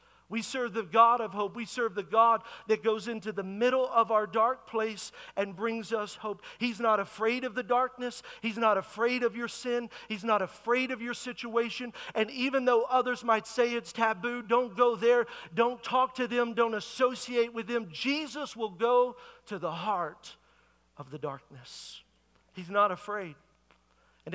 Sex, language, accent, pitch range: male, English, American, 205-245 Hz